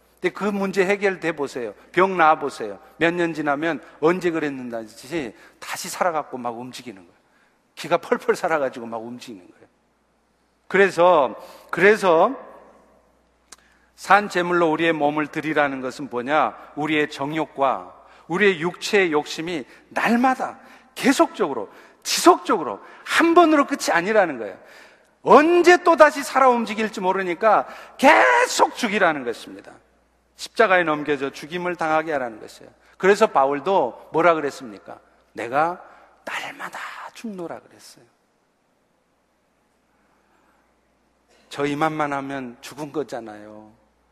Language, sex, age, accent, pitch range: Korean, male, 50-69, native, 145-195 Hz